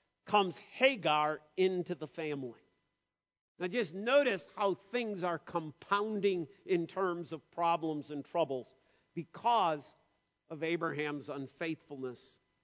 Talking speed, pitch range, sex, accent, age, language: 105 wpm, 150-200 Hz, male, American, 50-69, English